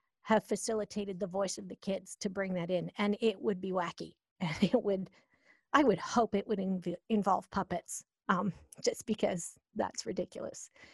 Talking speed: 175 wpm